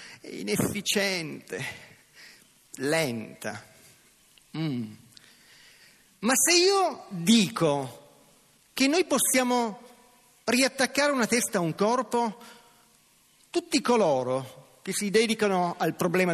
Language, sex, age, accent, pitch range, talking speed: Italian, male, 40-59, native, 175-245 Hz, 85 wpm